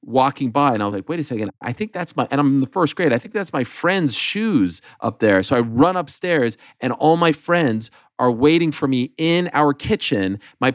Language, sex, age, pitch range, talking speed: English, male, 30-49, 115-160 Hz, 240 wpm